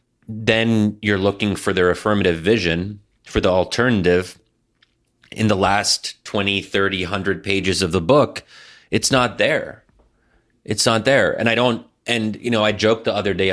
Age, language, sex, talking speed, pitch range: 30-49, English, male, 165 wpm, 90-115 Hz